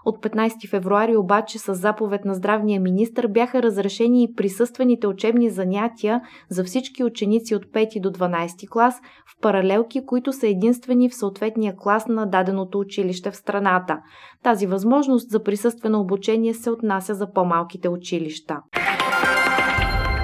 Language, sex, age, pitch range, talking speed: Bulgarian, female, 20-39, 195-235 Hz, 135 wpm